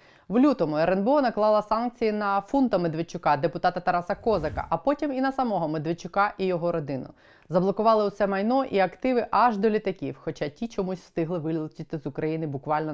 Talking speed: 165 wpm